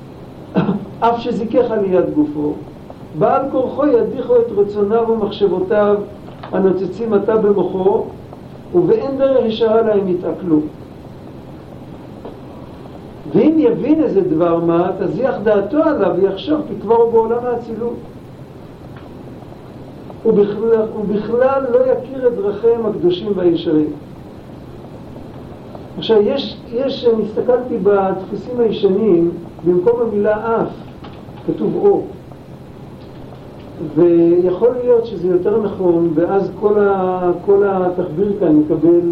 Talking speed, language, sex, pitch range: 95 wpm, Hebrew, male, 170-225 Hz